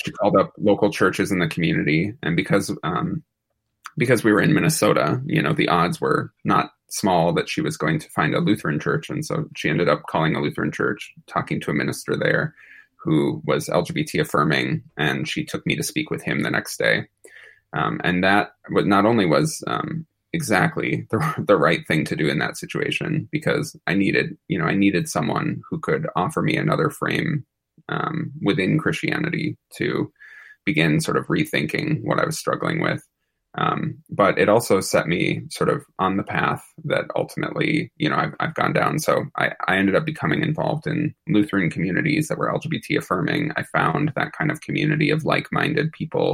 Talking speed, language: 190 wpm, English